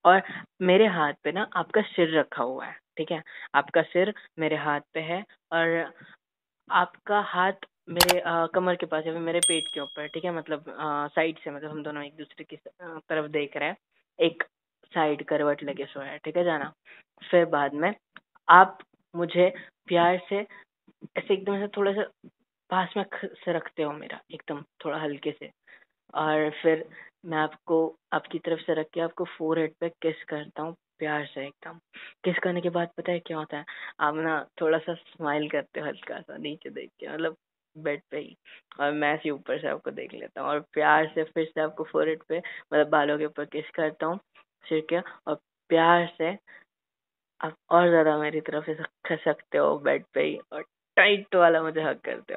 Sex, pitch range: female, 150-175 Hz